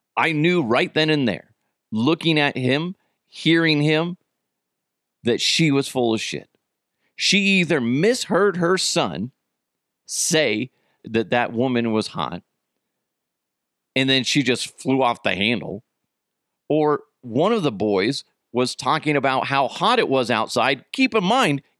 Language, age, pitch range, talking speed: English, 40-59, 120-185 Hz, 145 wpm